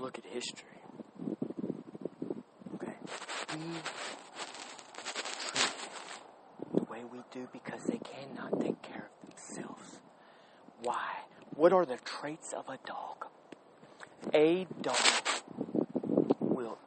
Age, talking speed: 40-59, 100 wpm